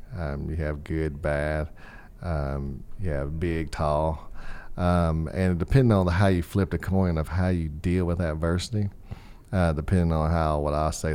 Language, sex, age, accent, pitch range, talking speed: English, male, 40-59, American, 80-95 Hz, 170 wpm